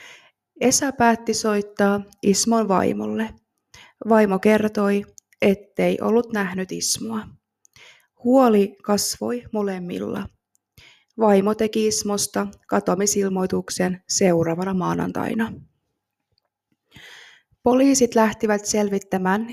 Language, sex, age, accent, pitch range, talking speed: Finnish, female, 20-39, native, 185-220 Hz, 70 wpm